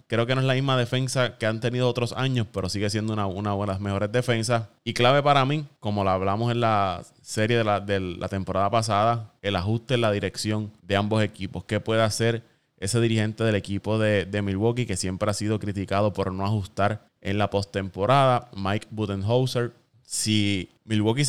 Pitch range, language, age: 100-120 Hz, Spanish, 20-39